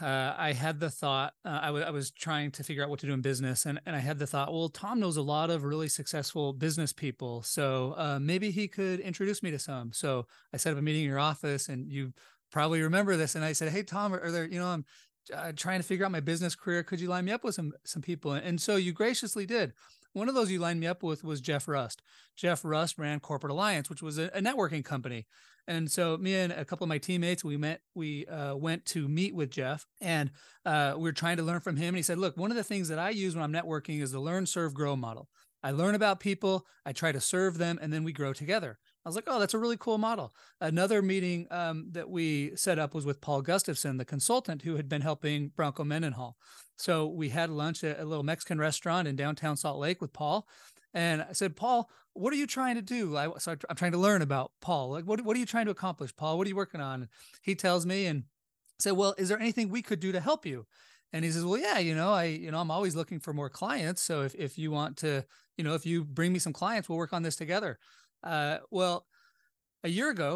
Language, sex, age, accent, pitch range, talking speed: English, male, 30-49, American, 150-185 Hz, 260 wpm